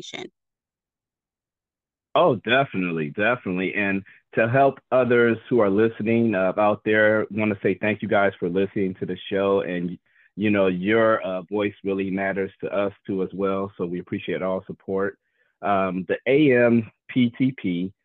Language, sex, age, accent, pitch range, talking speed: English, male, 40-59, American, 95-115 Hz, 150 wpm